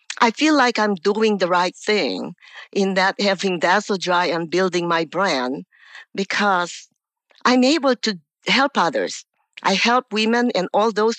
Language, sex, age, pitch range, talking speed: English, female, 50-69, 190-240 Hz, 155 wpm